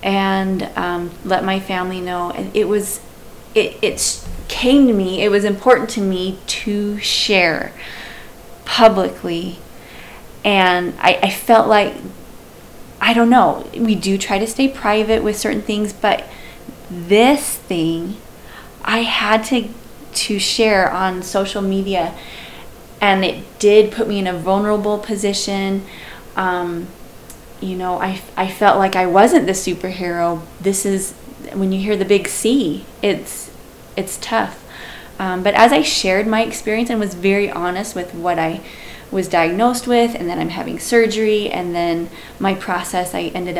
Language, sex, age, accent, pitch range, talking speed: English, female, 20-39, American, 180-220 Hz, 150 wpm